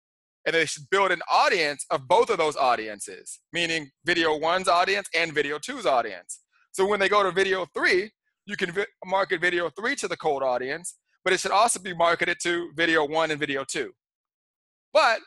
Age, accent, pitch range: 30-49, American, 150-190 Hz